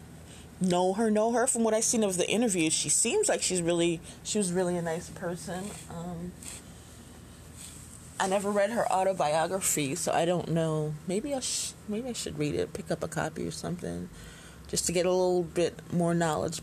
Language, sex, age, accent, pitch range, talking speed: English, female, 20-39, American, 155-195 Hz, 195 wpm